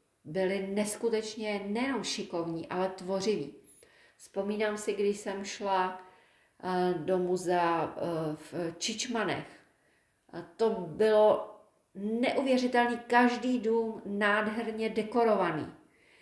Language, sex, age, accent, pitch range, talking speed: Czech, female, 40-59, native, 180-220 Hz, 80 wpm